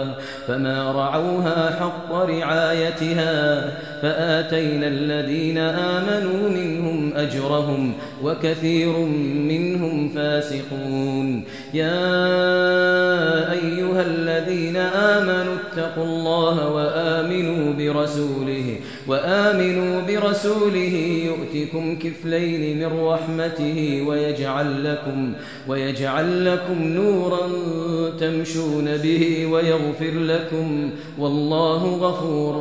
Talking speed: 70 wpm